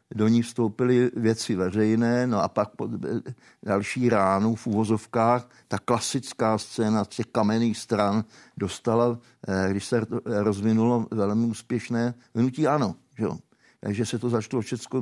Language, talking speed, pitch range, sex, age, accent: Czech, 135 wpm, 105-125 Hz, male, 60-79, native